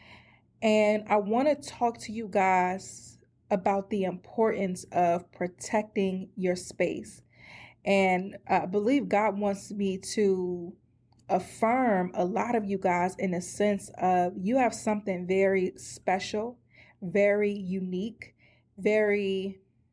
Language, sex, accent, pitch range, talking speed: English, female, American, 185-215 Hz, 115 wpm